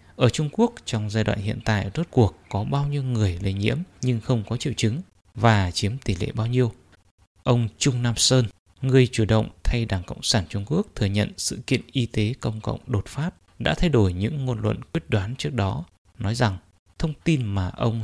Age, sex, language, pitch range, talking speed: 20-39, male, English, 100-130 Hz, 220 wpm